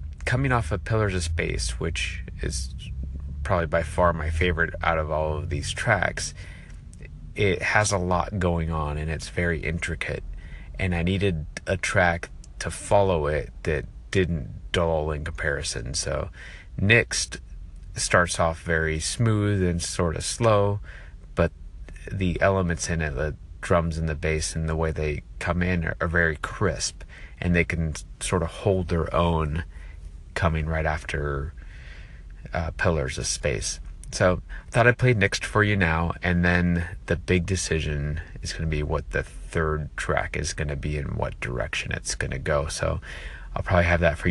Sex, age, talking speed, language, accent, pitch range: male, 30-49, 170 wpm, English, American, 75-90 Hz